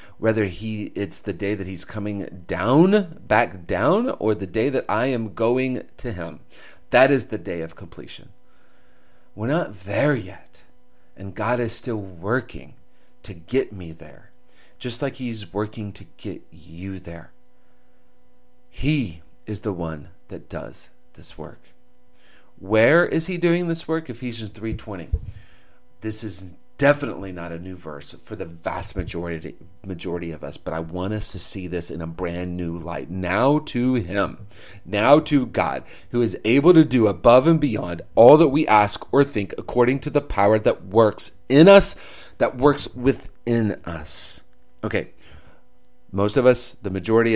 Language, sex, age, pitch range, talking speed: English, male, 40-59, 85-125 Hz, 160 wpm